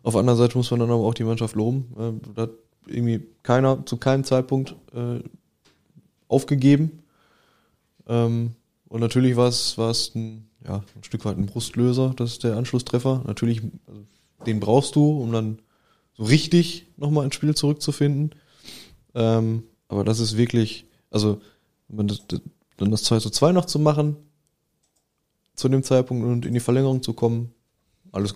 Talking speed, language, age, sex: 150 wpm, English, 20-39, male